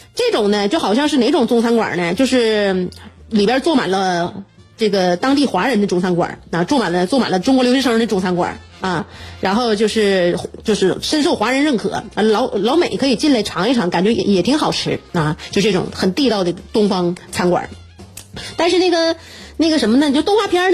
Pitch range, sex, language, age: 190-265 Hz, female, Chinese, 30-49